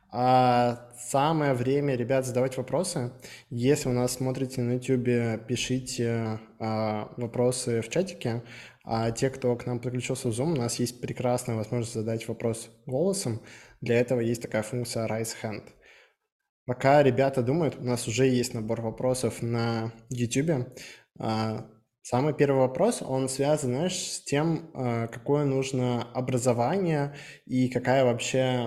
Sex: male